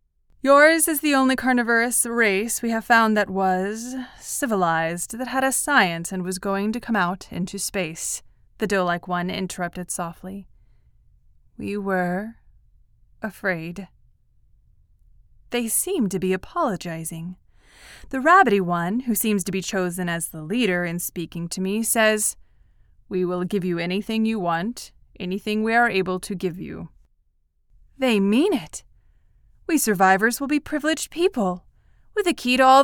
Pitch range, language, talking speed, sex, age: 190-260 Hz, English, 150 wpm, female, 20-39